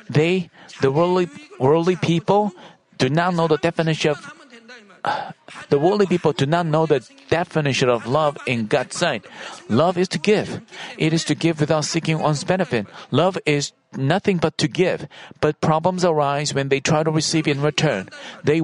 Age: 40-59